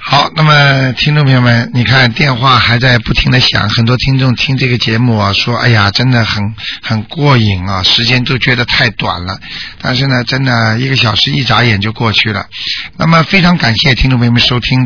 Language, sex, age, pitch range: Chinese, male, 50-69, 110-135 Hz